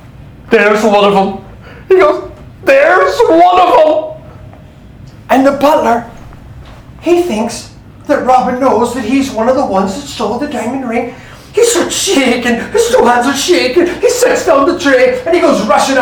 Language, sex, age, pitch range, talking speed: English, male, 40-59, 180-255 Hz, 170 wpm